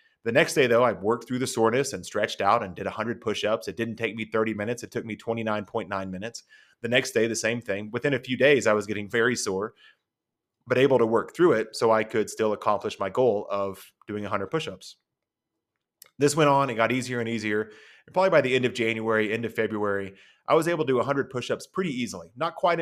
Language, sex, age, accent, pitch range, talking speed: English, male, 30-49, American, 100-120 Hz, 230 wpm